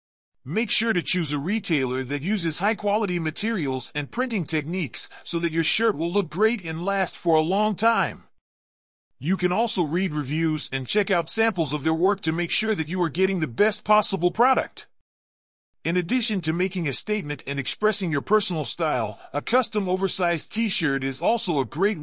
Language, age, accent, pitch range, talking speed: English, 40-59, American, 150-210 Hz, 185 wpm